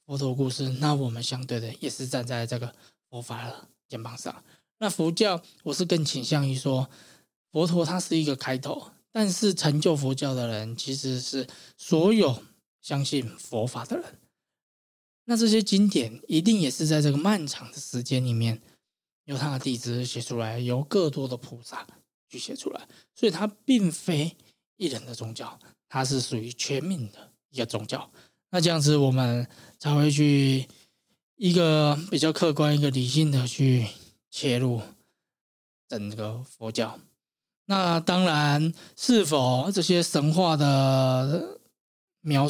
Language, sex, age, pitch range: Chinese, male, 20-39, 130-160 Hz